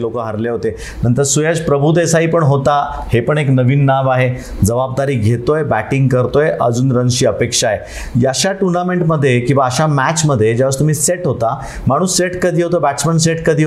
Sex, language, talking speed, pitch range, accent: male, Marathi, 170 wpm, 120-150 Hz, native